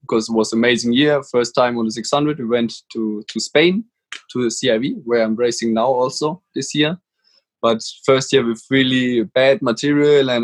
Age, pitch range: 20-39, 115-140 Hz